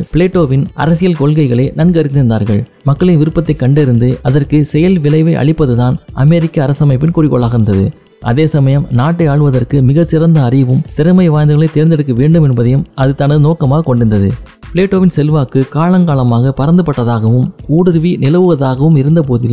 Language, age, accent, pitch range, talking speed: Tamil, 20-39, native, 130-160 Hz, 115 wpm